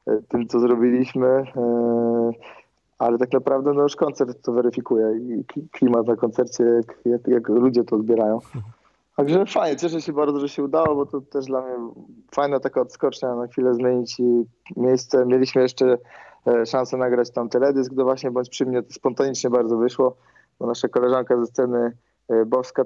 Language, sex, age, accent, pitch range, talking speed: Polish, male, 20-39, native, 120-145 Hz, 160 wpm